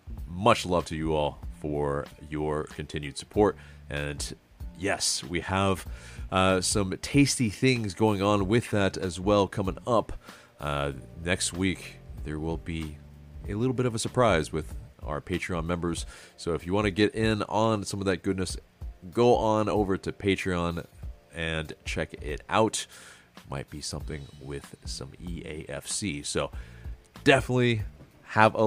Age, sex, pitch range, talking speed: 30-49, male, 75-105 Hz, 150 wpm